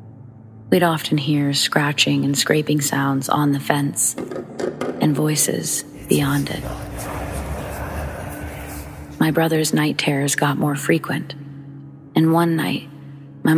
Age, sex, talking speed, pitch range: 30-49, female, 110 wpm, 140-155 Hz